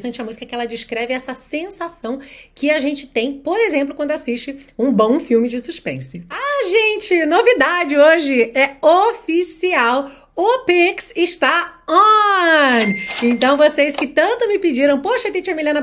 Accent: Brazilian